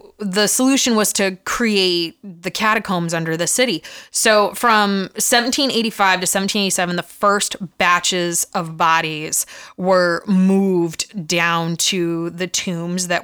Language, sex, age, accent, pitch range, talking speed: English, female, 20-39, American, 175-210 Hz, 120 wpm